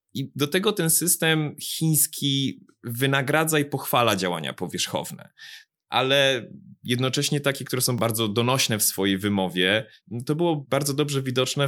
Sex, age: male, 20-39